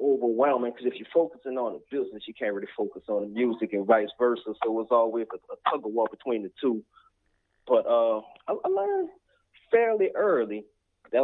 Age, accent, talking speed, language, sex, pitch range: 20-39, American, 205 wpm, English, male, 110-135 Hz